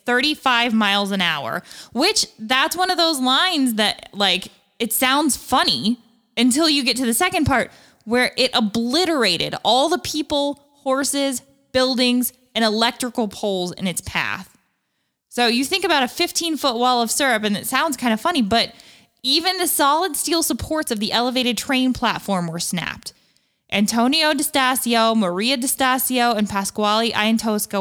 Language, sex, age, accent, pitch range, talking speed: English, female, 20-39, American, 210-260 Hz, 160 wpm